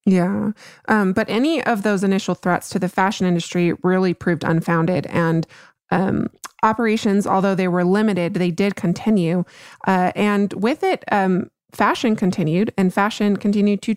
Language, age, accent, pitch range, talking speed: English, 20-39, American, 185-220 Hz, 155 wpm